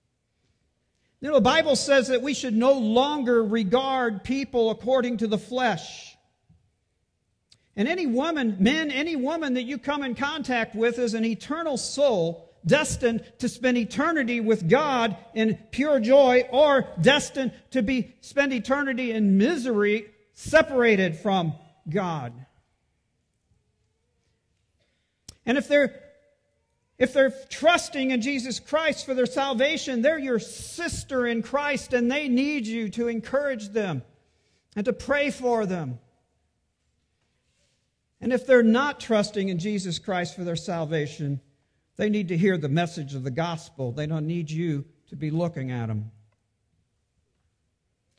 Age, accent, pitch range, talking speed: 50-69, American, 165-265 Hz, 140 wpm